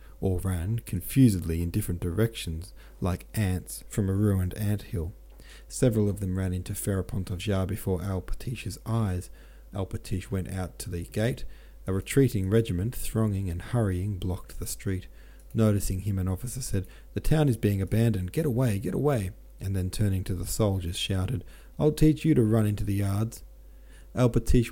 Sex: male